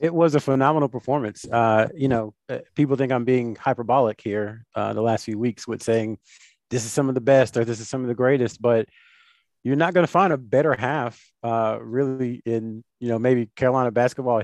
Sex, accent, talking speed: male, American, 210 wpm